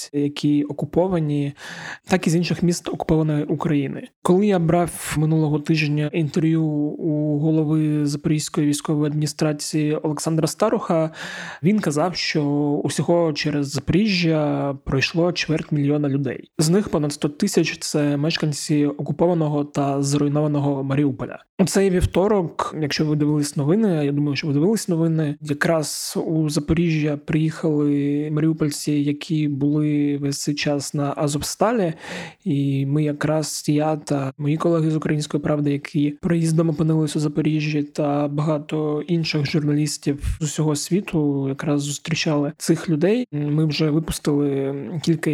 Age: 20-39